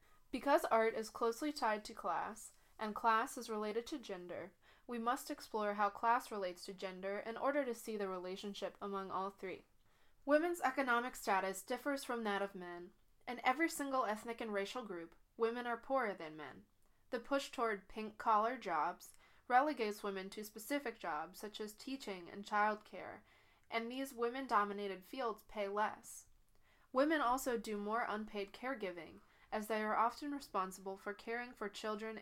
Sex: female